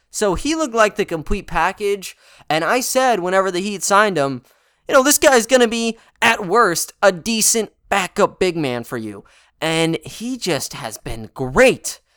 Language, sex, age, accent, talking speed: English, male, 20-39, American, 180 wpm